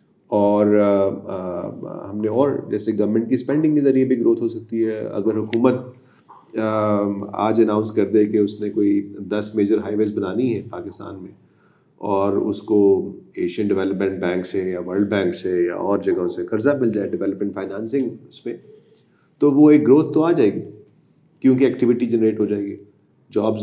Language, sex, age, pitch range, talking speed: Urdu, male, 30-49, 105-130 Hz, 185 wpm